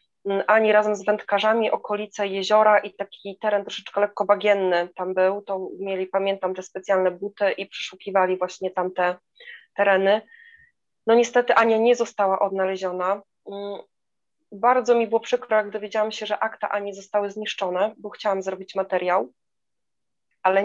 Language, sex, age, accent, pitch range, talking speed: Polish, female, 20-39, native, 195-235 Hz, 140 wpm